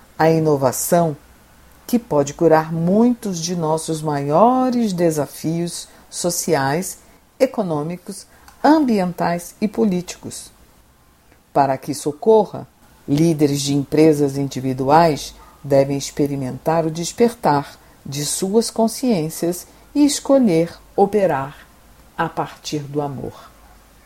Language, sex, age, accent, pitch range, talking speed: Portuguese, female, 50-69, Brazilian, 145-220 Hz, 90 wpm